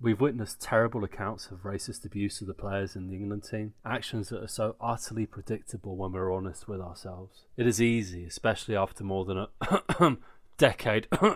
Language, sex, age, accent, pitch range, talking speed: English, male, 20-39, British, 95-120 Hz, 180 wpm